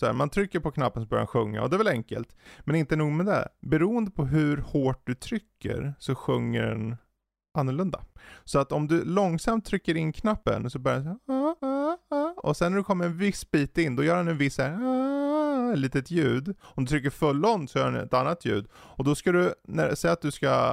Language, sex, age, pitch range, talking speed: Swedish, male, 20-39, 110-150 Hz, 225 wpm